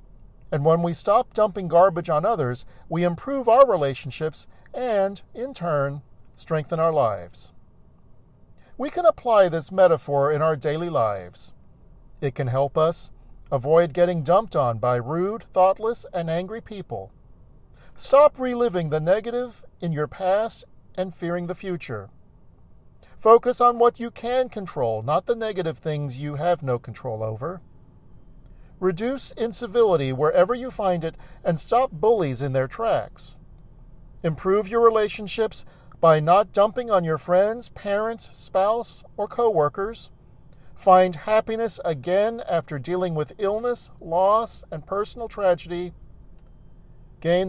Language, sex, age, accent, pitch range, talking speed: English, male, 50-69, American, 150-220 Hz, 130 wpm